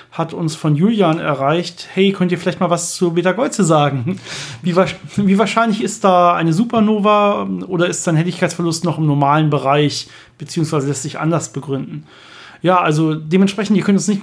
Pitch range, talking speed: 155-190 Hz, 175 wpm